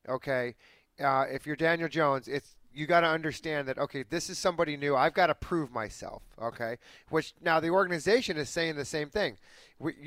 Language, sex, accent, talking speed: English, male, American, 195 wpm